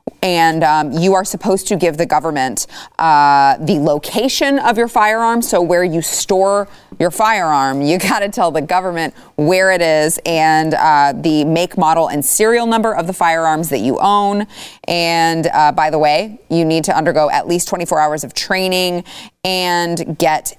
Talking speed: 180 wpm